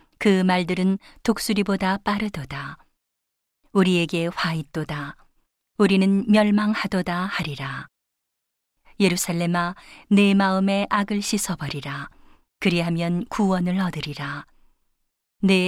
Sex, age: female, 40-59